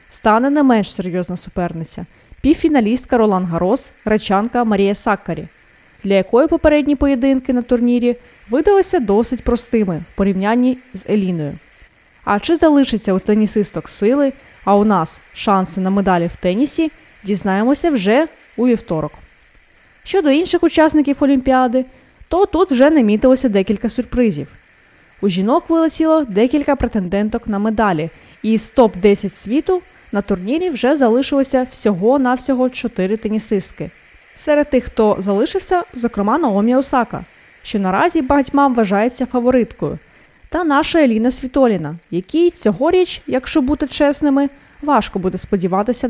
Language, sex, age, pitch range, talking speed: Ukrainian, female, 20-39, 205-285 Hz, 125 wpm